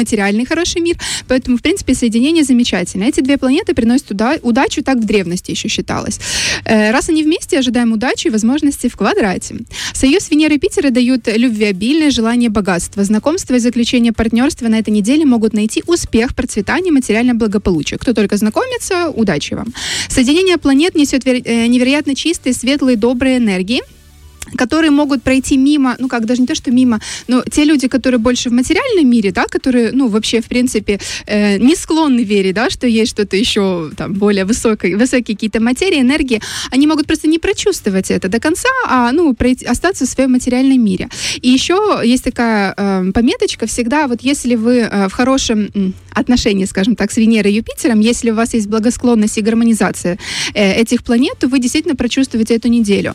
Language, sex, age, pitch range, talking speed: Russian, female, 20-39, 225-285 Hz, 175 wpm